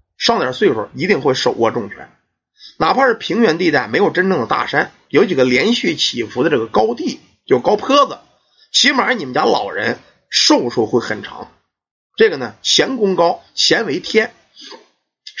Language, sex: Chinese, male